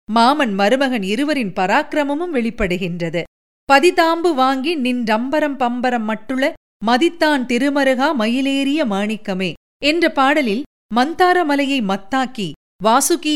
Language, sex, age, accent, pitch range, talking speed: Tamil, female, 40-59, native, 220-300 Hz, 90 wpm